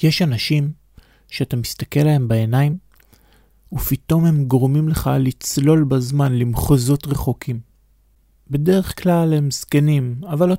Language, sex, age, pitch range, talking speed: Hebrew, male, 30-49, 125-155 Hz, 115 wpm